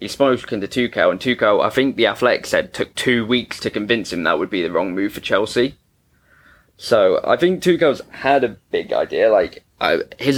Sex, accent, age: male, British, 20-39